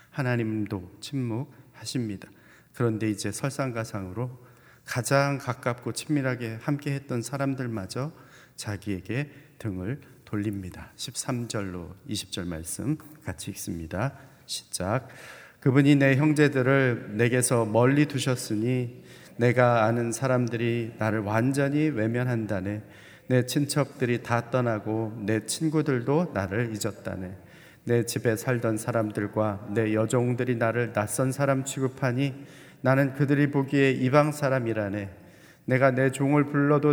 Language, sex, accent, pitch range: Korean, male, native, 110-140 Hz